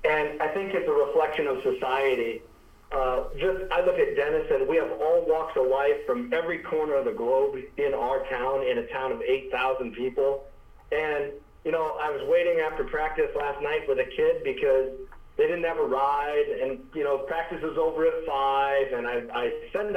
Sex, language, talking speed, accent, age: male, English, 205 wpm, American, 50-69